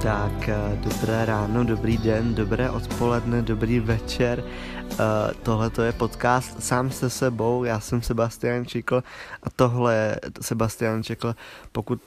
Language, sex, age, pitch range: Czech, male, 20-39, 115-125 Hz